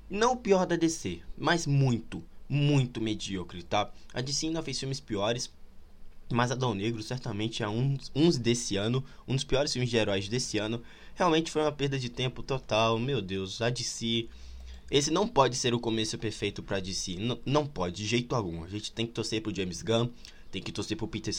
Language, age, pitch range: Portuguese, 20-39, 100-135 Hz